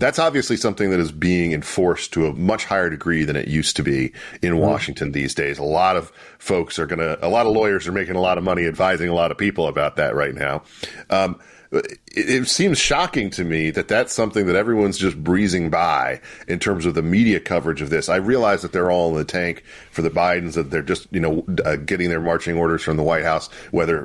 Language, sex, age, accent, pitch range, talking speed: English, male, 40-59, American, 85-105 Hz, 240 wpm